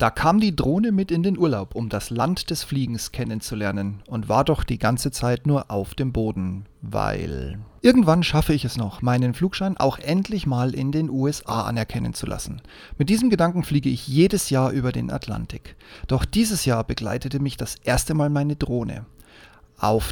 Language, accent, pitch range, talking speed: German, German, 120-160 Hz, 185 wpm